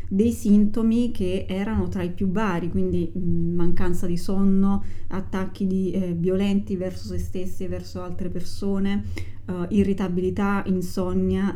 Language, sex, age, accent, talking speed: Italian, female, 20-39, native, 140 wpm